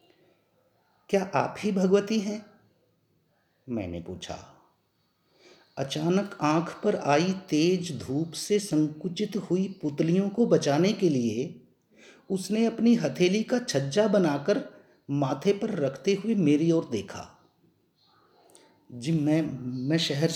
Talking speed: 110 wpm